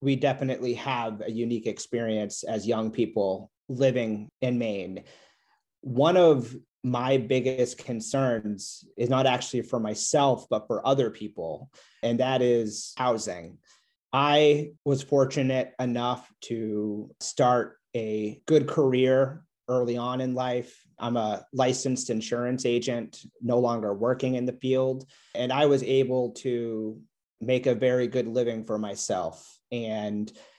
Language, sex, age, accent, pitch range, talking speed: English, male, 30-49, American, 115-130 Hz, 130 wpm